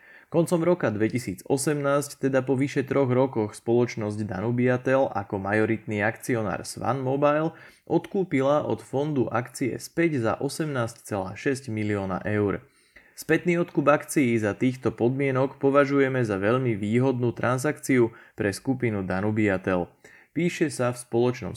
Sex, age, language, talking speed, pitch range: male, 20-39, Slovak, 115 wpm, 110-140 Hz